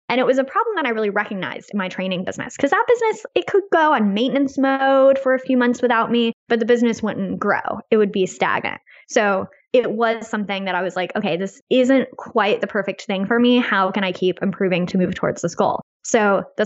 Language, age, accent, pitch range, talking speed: English, 10-29, American, 195-240 Hz, 240 wpm